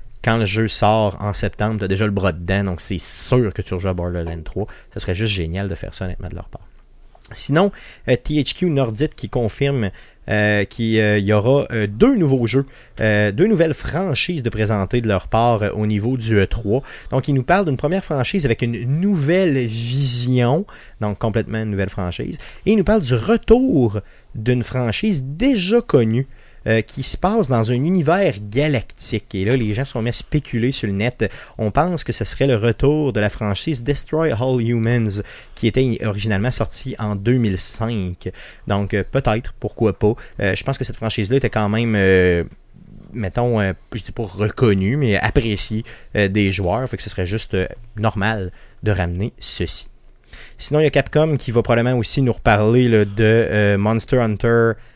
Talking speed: 190 wpm